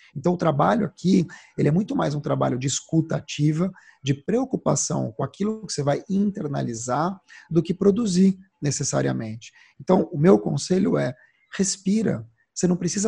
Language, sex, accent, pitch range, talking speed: Portuguese, male, Brazilian, 140-170 Hz, 155 wpm